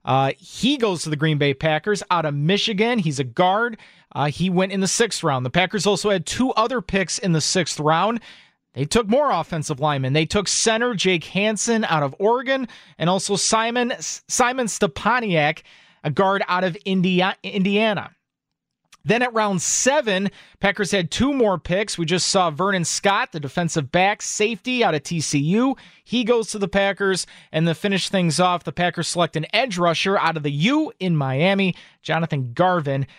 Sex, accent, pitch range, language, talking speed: male, American, 160-210 Hz, English, 180 wpm